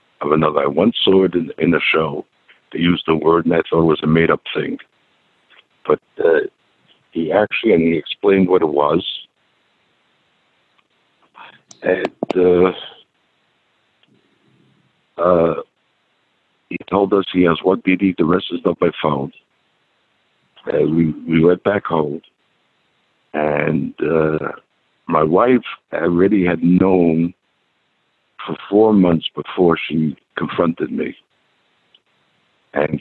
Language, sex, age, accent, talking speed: English, male, 60-79, American, 125 wpm